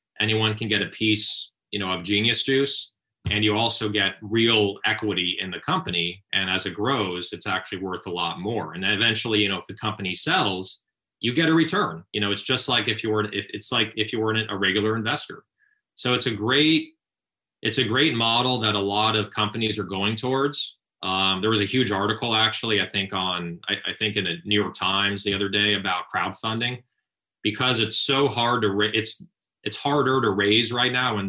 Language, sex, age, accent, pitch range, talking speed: English, male, 30-49, American, 105-125 Hz, 215 wpm